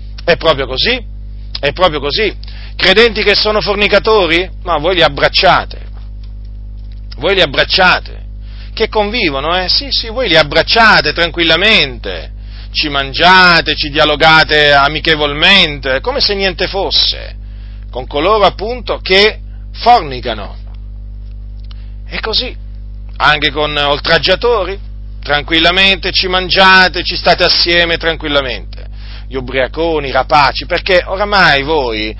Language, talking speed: Italian, 110 wpm